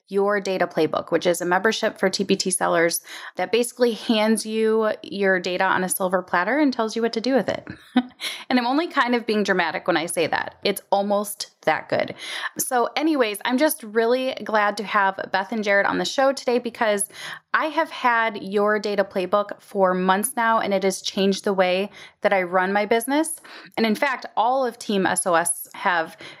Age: 30-49